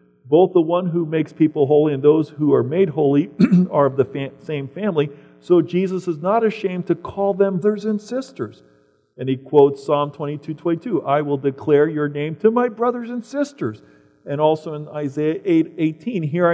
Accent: American